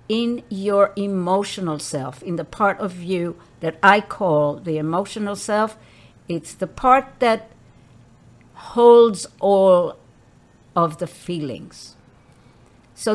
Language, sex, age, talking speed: English, female, 60-79, 115 wpm